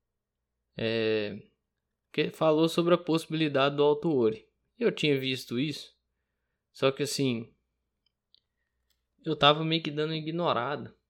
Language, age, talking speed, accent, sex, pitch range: Portuguese, 20-39, 120 wpm, Brazilian, male, 110-145 Hz